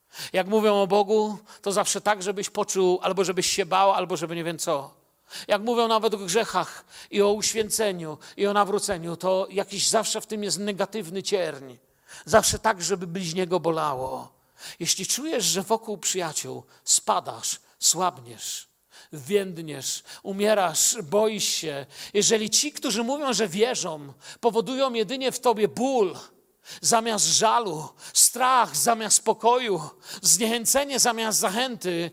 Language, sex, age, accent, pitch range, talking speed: Polish, male, 50-69, native, 180-225 Hz, 135 wpm